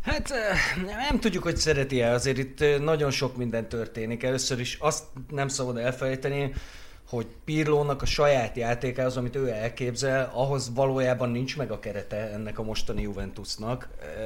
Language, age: Hungarian, 30-49